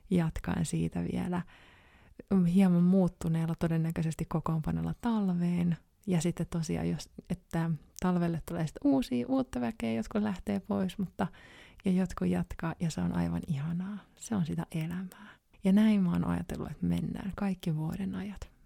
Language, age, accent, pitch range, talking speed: Finnish, 30-49, native, 160-195 Hz, 145 wpm